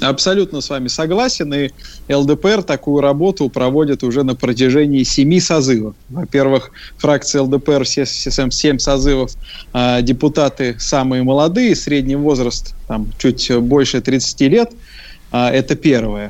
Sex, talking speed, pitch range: male, 120 wpm, 135-190 Hz